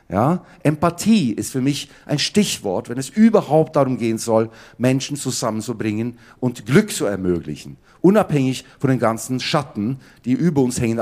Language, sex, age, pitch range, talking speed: German, male, 50-69, 115-150 Hz, 155 wpm